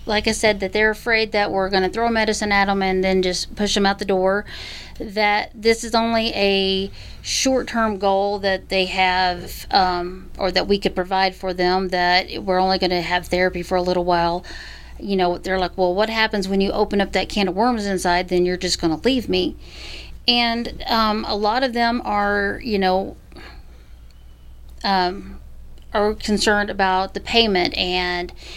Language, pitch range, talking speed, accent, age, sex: English, 185-220 Hz, 190 wpm, American, 40-59, female